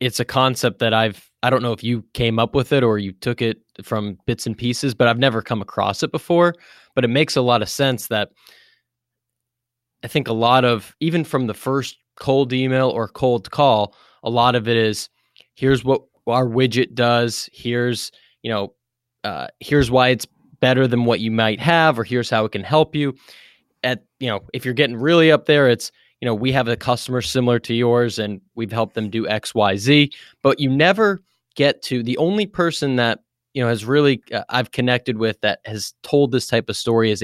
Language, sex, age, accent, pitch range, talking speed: English, male, 20-39, American, 115-135 Hz, 210 wpm